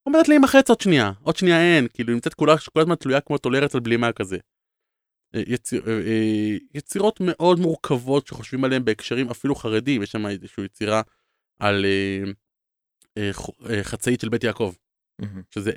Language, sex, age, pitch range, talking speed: Hebrew, male, 20-39, 105-135 Hz, 150 wpm